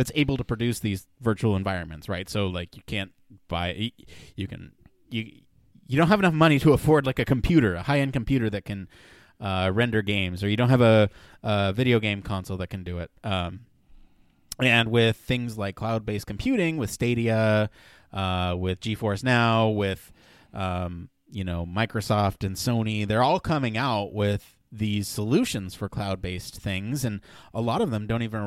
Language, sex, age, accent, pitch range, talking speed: English, male, 30-49, American, 100-125 Hz, 175 wpm